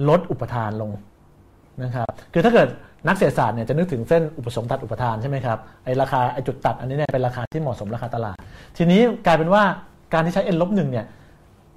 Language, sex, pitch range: Thai, male, 115-165 Hz